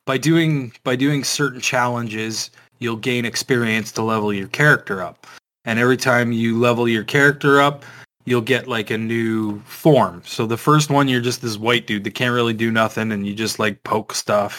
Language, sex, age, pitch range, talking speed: English, male, 20-39, 110-130 Hz, 200 wpm